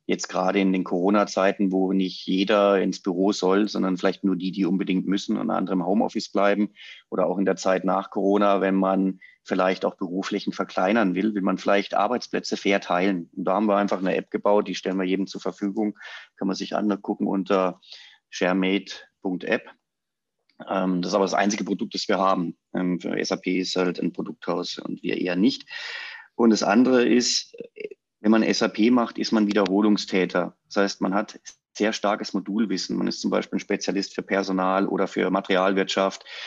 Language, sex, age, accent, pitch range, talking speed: German, male, 30-49, German, 95-105 Hz, 185 wpm